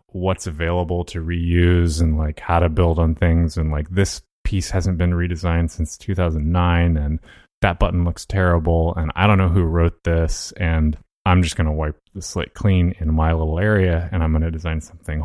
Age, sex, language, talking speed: 30-49, male, English, 200 wpm